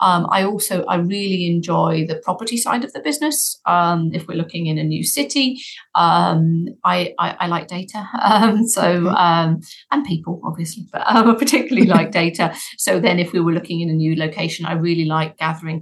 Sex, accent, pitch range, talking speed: female, British, 160-190 Hz, 195 wpm